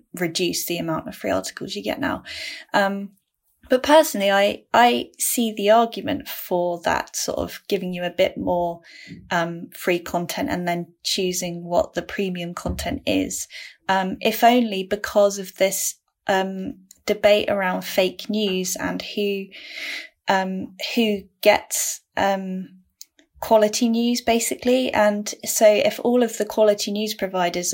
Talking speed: 145 wpm